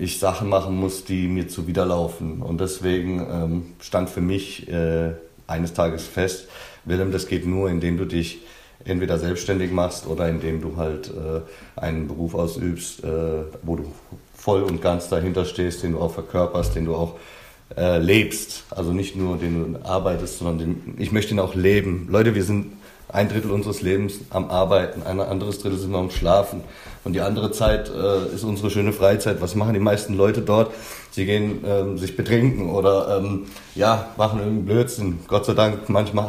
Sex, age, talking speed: male, 40-59, 185 wpm